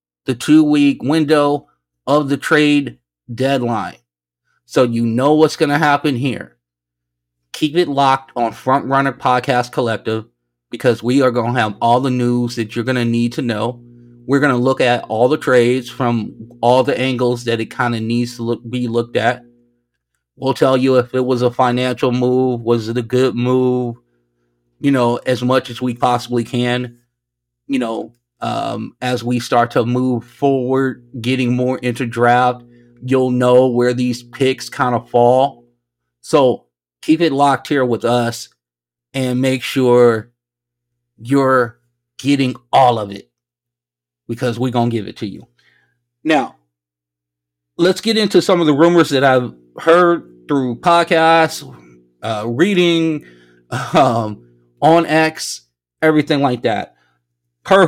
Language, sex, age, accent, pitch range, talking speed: English, male, 30-49, American, 115-130 Hz, 155 wpm